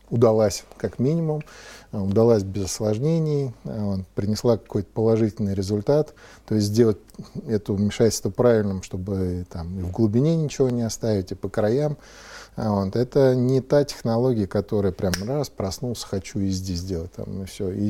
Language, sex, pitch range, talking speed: Russian, male, 100-120 Hz, 150 wpm